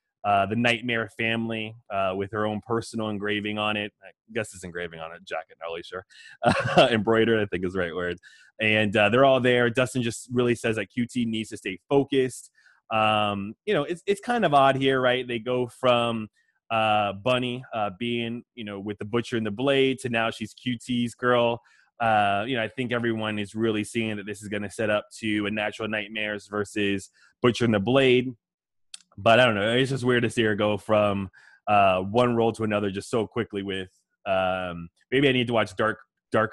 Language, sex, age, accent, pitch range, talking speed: English, male, 20-39, American, 105-125 Hz, 210 wpm